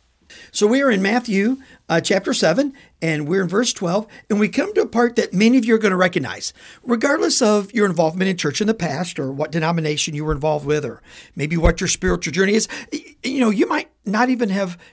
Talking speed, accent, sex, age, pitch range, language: 230 wpm, American, male, 50-69, 150-225 Hz, English